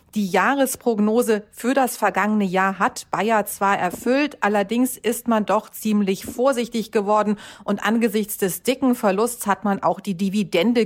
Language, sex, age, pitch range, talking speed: German, female, 40-59, 200-235 Hz, 150 wpm